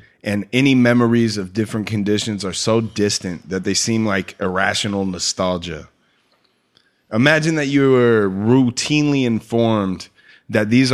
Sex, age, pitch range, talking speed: male, 30-49, 100-120 Hz, 125 wpm